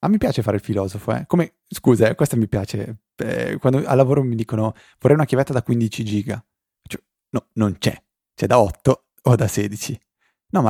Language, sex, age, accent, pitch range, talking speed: Italian, male, 20-39, native, 100-120 Hz, 215 wpm